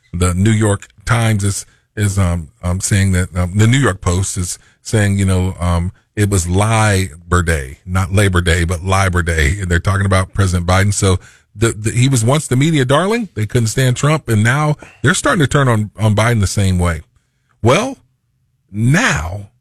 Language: English